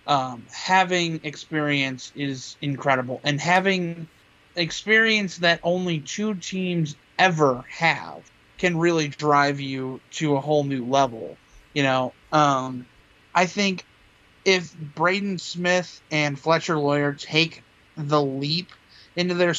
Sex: male